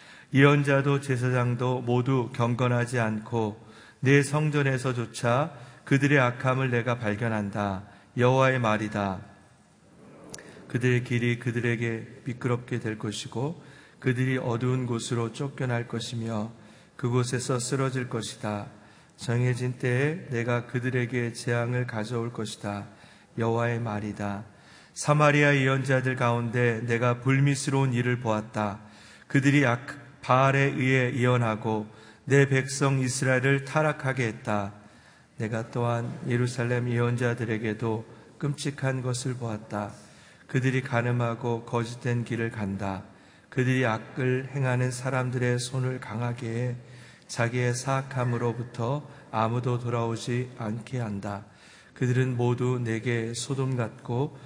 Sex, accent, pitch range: male, native, 115-130 Hz